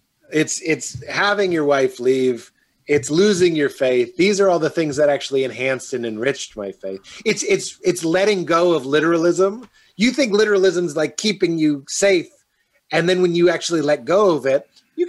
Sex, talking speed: male, 185 wpm